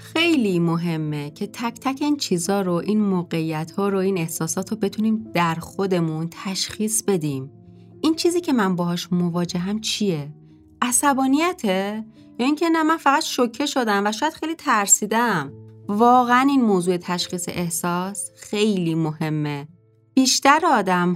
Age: 30-49